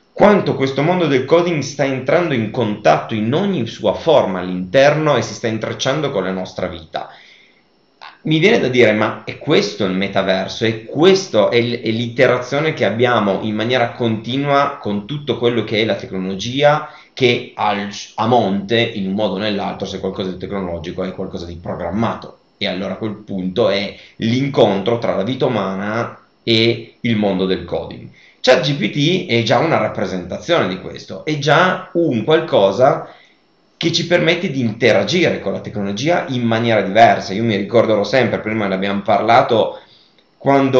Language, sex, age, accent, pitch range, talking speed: Italian, male, 30-49, native, 95-130 Hz, 165 wpm